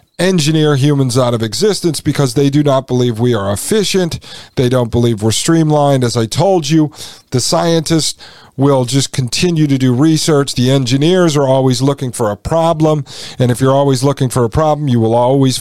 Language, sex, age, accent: English, male, 40-59, American